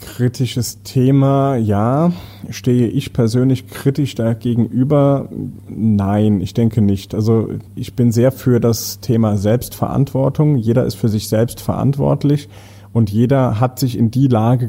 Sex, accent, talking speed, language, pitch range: male, German, 140 wpm, German, 105-130 Hz